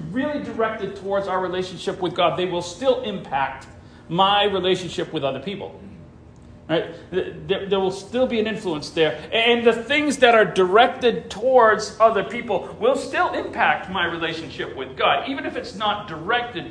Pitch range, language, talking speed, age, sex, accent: 160-235 Hz, English, 160 wpm, 40-59, male, American